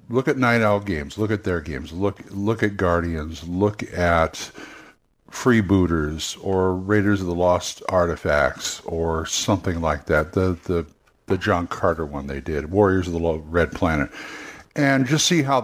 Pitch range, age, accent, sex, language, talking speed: 90-120 Hz, 60-79, American, male, English, 165 wpm